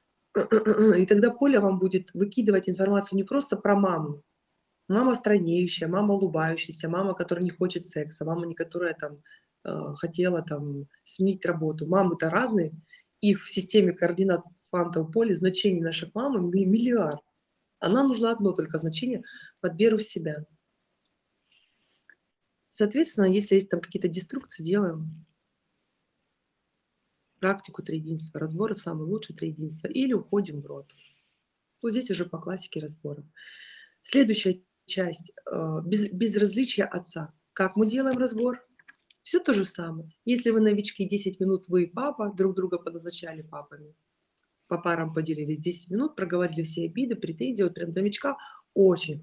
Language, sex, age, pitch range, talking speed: Russian, female, 20-39, 165-210 Hz, 135 wpm